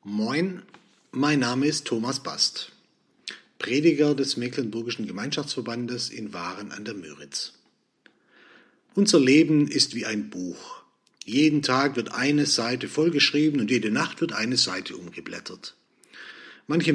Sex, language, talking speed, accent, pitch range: male, German, 125 wpm, German, 115-150 Hz